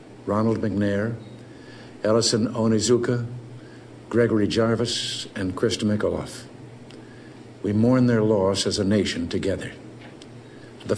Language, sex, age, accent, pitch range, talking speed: English, male, 60-79, American, 100-115 Hz, 100 wpm